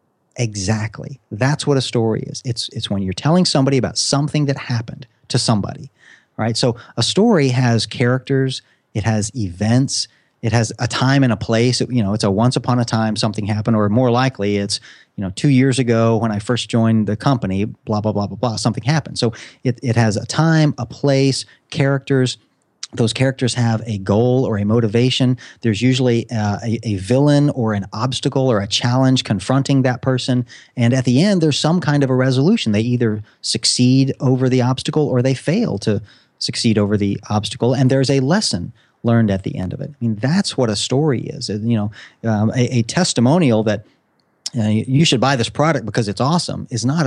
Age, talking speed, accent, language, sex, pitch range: 40-59, 200 wpm, American, English, male, 110-135 Hz